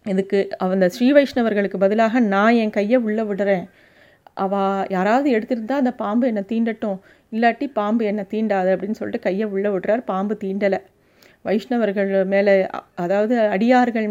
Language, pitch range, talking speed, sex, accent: Tamil, 190-225 Hz, 135 wpm, female, native